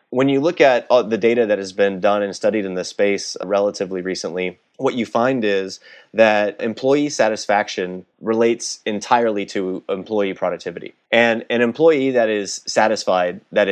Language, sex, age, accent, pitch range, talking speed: English, male, 30-49, American, 95-115 Hz, 155 wpm